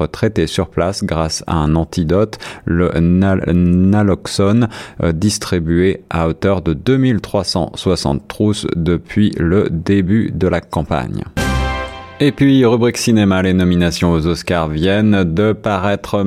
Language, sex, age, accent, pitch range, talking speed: French, male, 30-49, French, 90-115 Hz, 125 wpm